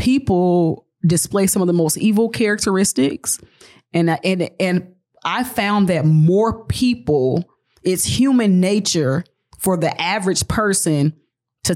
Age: 20-39